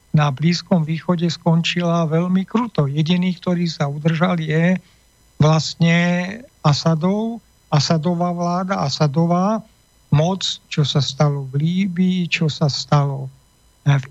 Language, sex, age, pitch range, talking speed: Slovak, male, 50-69, 150-180 Hz, 110 wpm